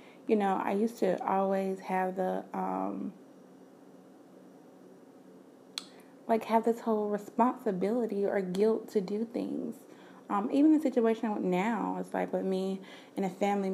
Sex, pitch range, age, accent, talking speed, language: female, 190-230 Hz, 20-39, American, 135 wpm, English